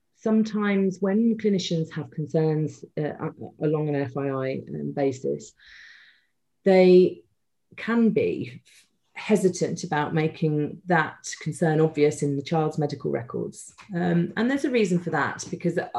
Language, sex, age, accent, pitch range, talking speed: English, female, 40-59, British, 145-175 Hz, 120 wpm